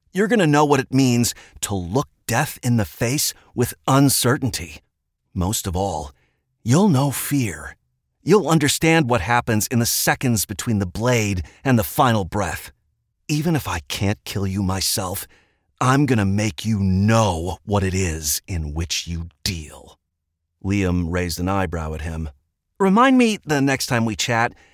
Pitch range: 80-120 Hz